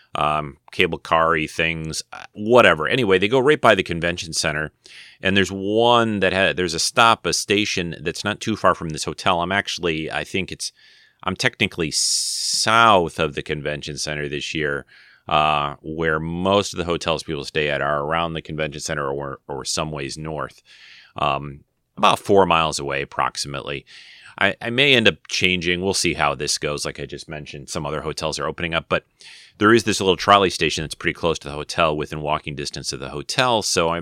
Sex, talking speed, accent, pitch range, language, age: male, 195 wpm, American, 75-95 Hz, English, 30-49